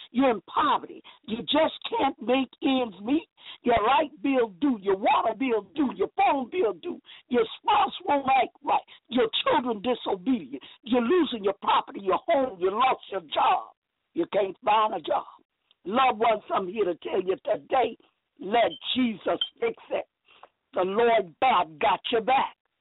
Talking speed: 165 wpm